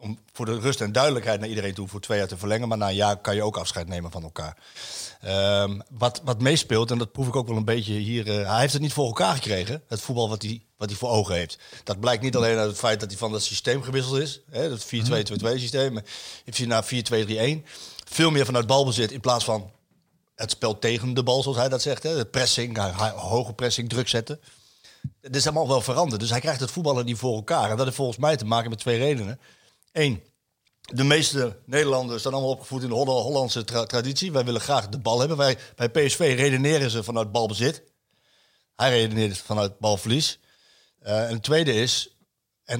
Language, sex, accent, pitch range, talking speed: Dutch, male, Dutch, 110-135 Hz, 215 wpm